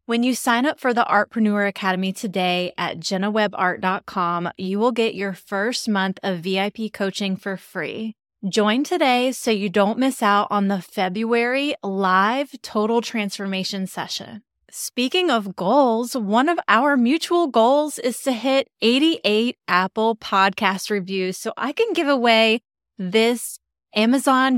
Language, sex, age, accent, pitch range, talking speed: English, female, 20-39, American, 195-250 Hz, 140 wpm